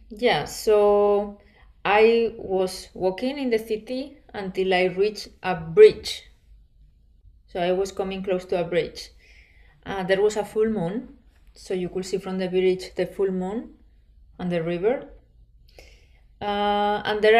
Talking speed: 150 wpm